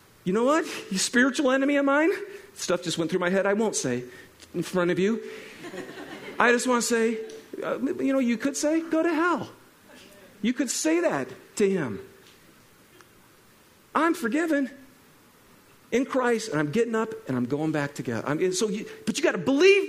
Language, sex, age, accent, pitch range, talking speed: English, male, 50-69, American, 180-260 Hz, 180 wpm